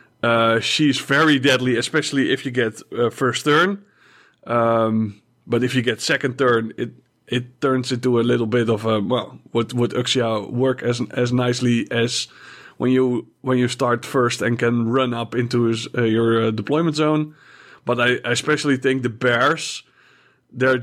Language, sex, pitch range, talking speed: English, male, 120-145 Hz, 175 wpm